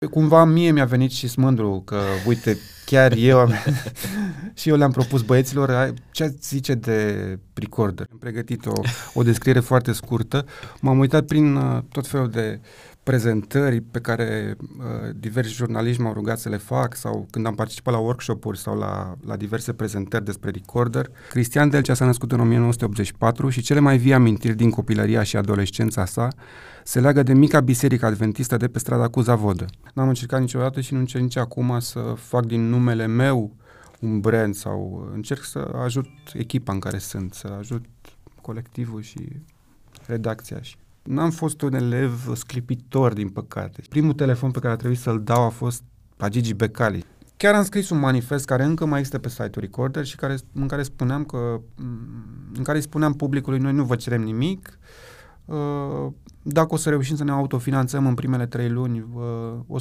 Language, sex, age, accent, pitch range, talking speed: Romanian, male, 30-49, native, 115-135 Hz, 170 wpm